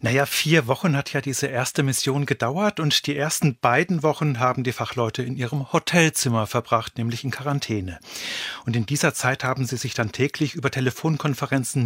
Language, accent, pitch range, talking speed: German, German, 125-150 Hz, 175 wpm